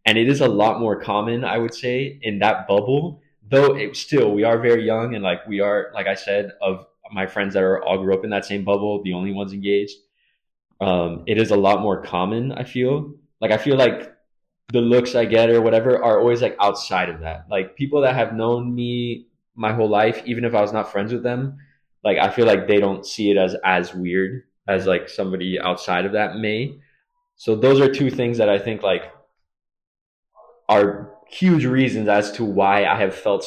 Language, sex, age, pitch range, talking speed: English, male, 20-39, 100-120 Hz, 215 wpm